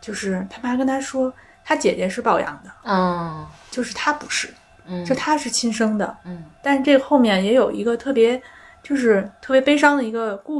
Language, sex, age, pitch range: Chinese, female, 20-39, 195-270 Hz